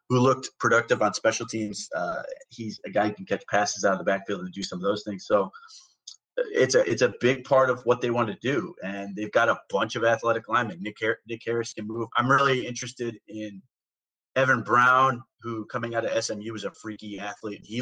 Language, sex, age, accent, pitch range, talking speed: English, male, 30-49, American, 110-125 Hz, 220 wpm